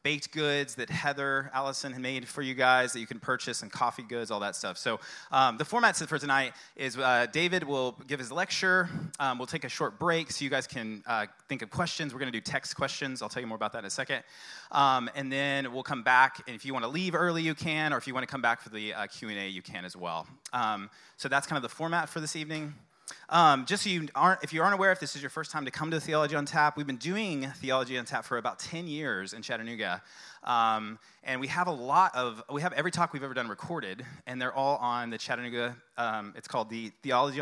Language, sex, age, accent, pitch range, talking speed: English, male, 30-49, American, 125-155 Hz, 260 wpm